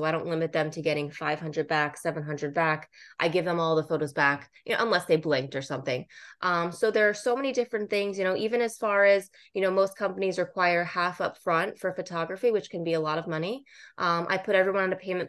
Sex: female